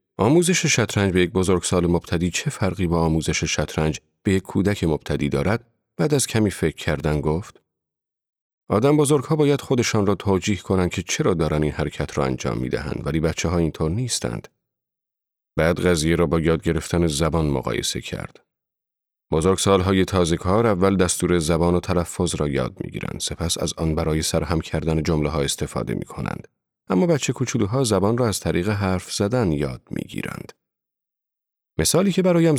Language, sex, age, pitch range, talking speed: Persian, male, 40-59, 80-105 Hz, 155 wpm